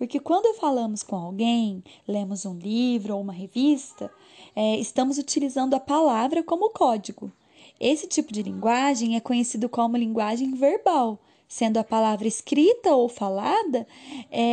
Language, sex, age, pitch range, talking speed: Amharic, female, 10-29, 210-265 Hz, 140 wpm